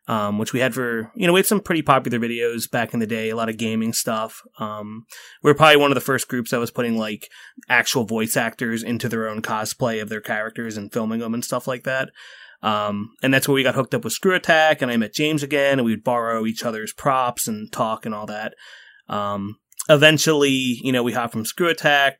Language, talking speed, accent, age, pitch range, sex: English, 240 wpm, American, 20-39, 110-135 Hz, male